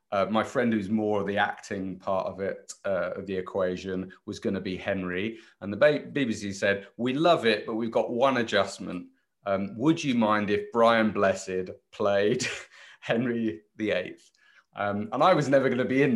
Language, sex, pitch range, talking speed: English, male, 95-115 Hz, 190 wpm